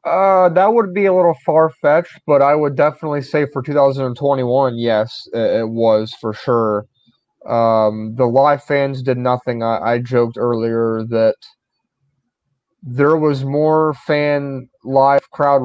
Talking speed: 140 wpm